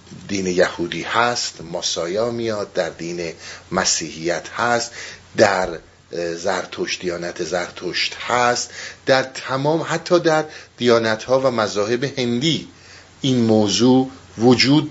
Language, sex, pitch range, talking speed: Persian, male, 100-135 Hz, 95 wpm